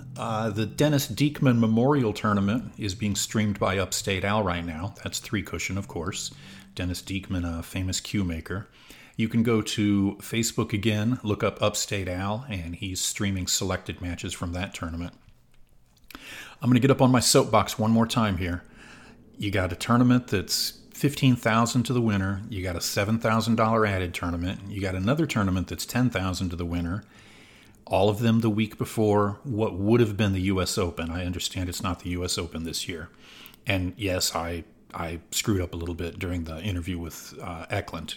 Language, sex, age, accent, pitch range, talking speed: English, male, 40-59, American, 90-110 Hz, 190 wpm